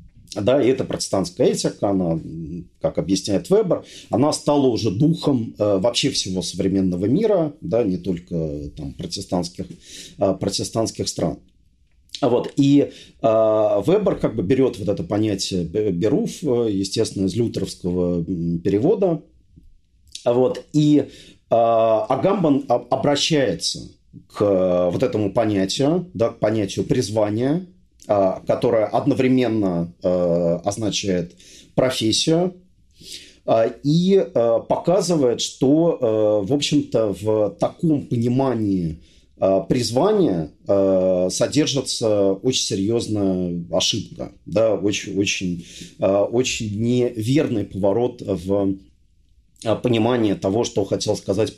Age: 40-59